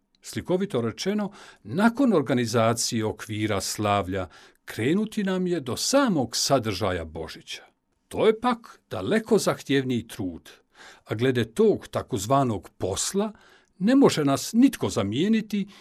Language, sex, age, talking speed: Croatian, male, 60-79, 110 wpm